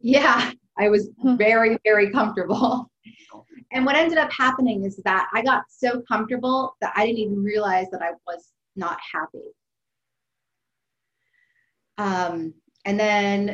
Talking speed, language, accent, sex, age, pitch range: 135 wpm, English, American, female, 30-49, 185-215 Hz